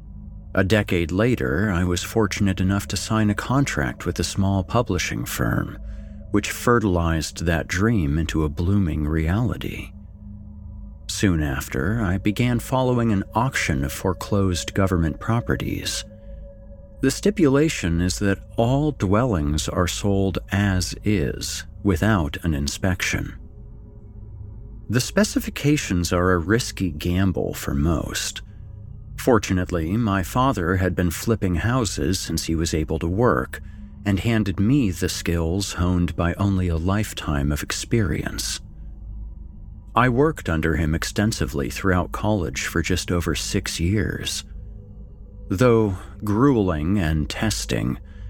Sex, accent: male, American